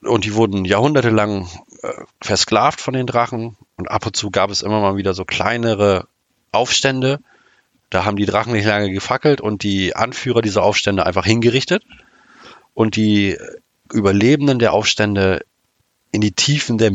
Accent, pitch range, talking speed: German, 95-120 Hz, 155 wpm